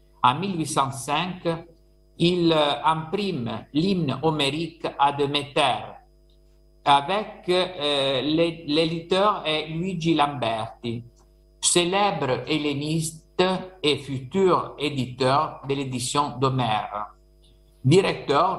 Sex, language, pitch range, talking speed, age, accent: male, French, 120-155 Hz, 75 wpm, 50-69, Italian